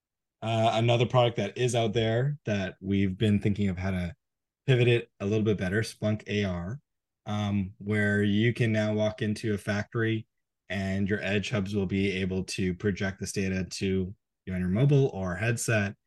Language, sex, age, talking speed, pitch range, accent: English, male, 20-39, 185 wpm, 95-115 Hz, American